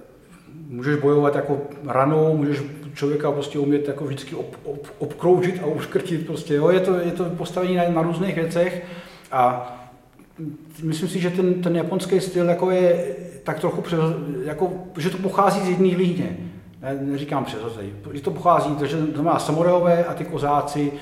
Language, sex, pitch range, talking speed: Czech, male, 135-160 Hz, 165 wpm